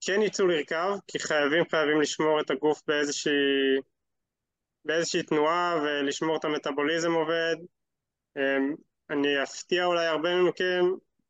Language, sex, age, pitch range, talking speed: Hebrew, male, 20-39, 150-180 Hz, 110 wpm